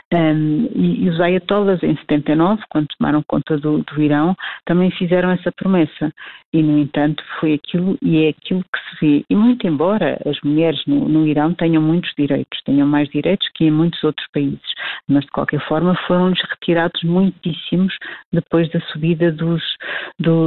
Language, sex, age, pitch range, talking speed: Portuguese, female, 50-69, 155-175 Hz, 170 wpm